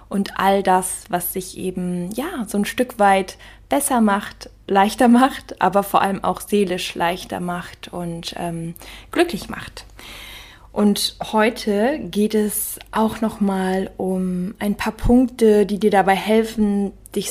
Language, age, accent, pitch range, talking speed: German, 20-39, German, 185-215 Hz, 140 wpm